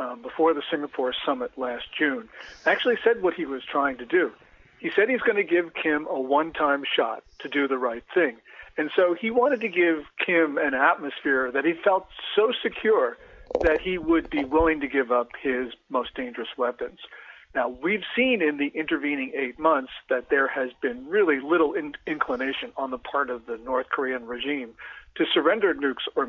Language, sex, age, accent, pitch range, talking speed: English, male, 50-69, American, 140-185 Hz, 185 wpm